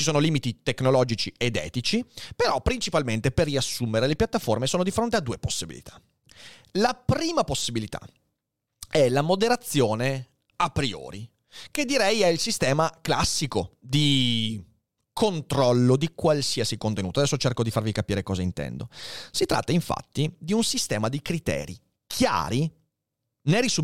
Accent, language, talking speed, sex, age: native, Italian, 135 wpm, male, 30-49